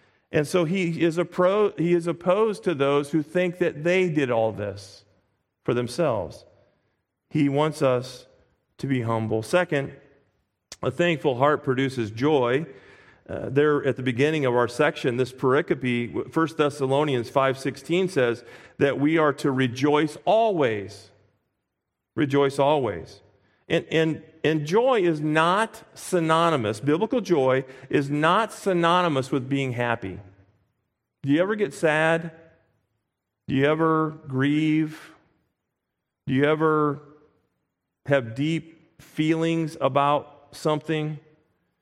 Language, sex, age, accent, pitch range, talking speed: English, male, 40-59, American, 125-160 Hz, 125 wpm